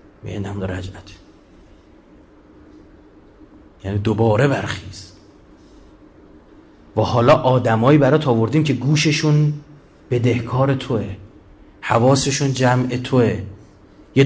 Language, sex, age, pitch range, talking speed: Persian, male, 30-49, 110-155 Hz, 75 wpm